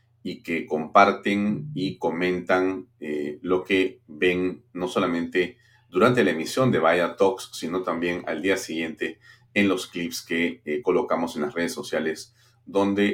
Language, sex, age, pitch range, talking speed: Spanish, male, 40-59, 85-120 Hz, 150 wpm